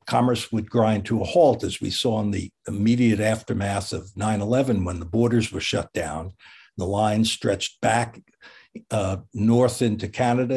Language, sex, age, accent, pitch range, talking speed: English, male, 60-79, American, 110-130 Hz, 165 wpm